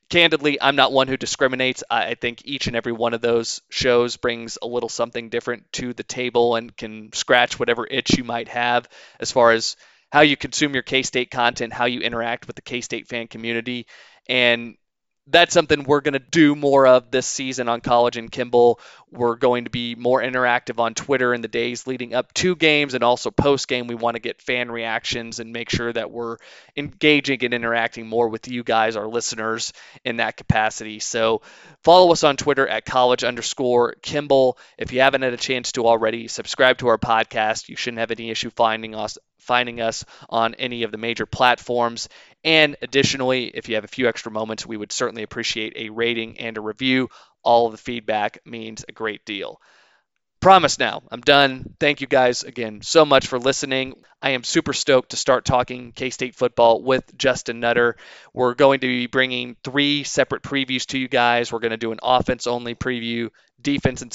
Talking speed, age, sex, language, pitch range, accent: 195 wpm, 20-39, male, English, 115-130 Hz, American